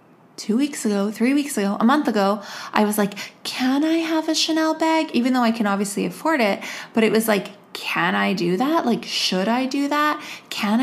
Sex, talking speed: female, 215 wpm